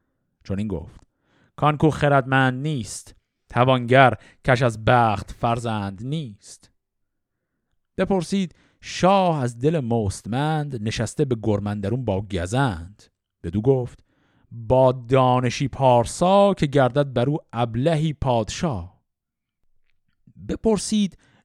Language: Persian